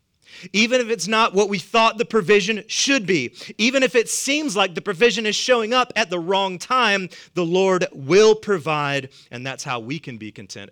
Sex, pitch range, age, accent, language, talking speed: male, 125-185 Hz, 30-49, American, English, 200 wpm